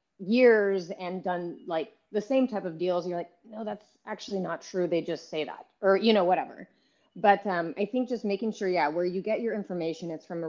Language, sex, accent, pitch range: English, female, American, 160-195 Hz